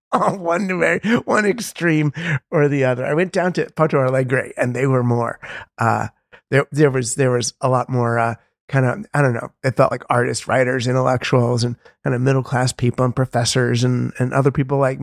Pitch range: 120-150 Hz